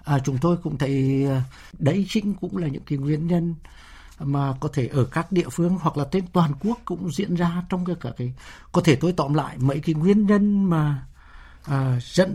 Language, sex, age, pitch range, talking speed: Vietnamese, male, 60-79, 130-175 Hz, 200 wpm